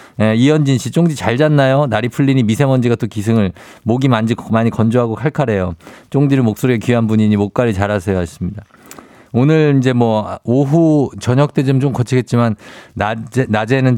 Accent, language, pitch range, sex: native, Korean, 100-130 Hz, male